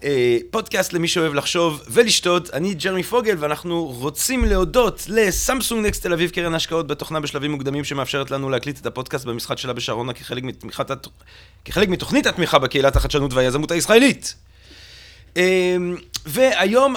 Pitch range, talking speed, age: 125-185 Hz, 135 wpm, 30-49